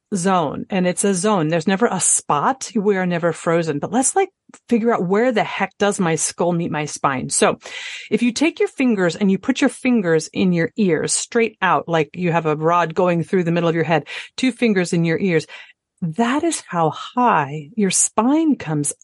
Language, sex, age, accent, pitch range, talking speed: English, female, 40-59, American, 170-230 Hz, 210 wpm